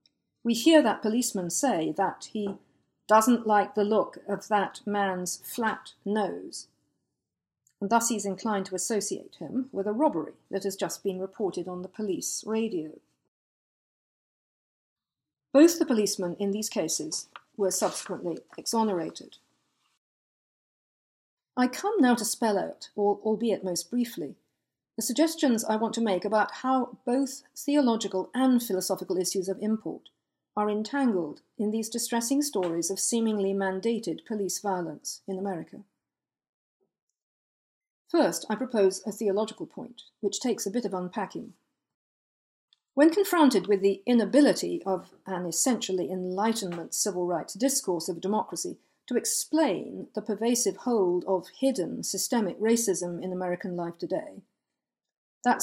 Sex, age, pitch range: female, 50-69, 190-245 Hz